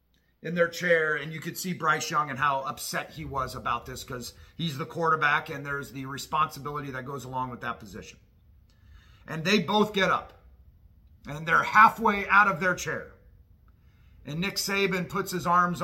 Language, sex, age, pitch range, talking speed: English, male, 40-59, 105-160 Hz, 180 wpm